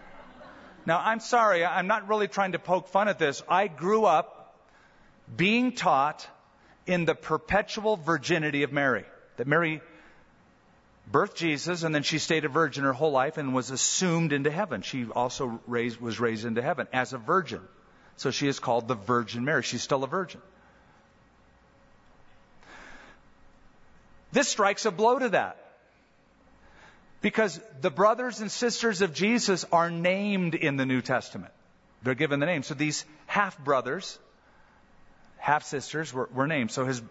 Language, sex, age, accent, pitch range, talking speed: English, male, 40-59, American, 140-190 Hz, 150 wpm